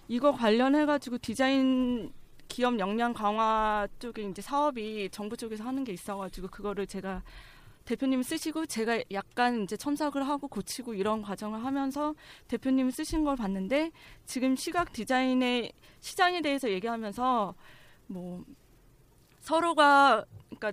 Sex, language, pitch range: female, Korean, 210-285 Hz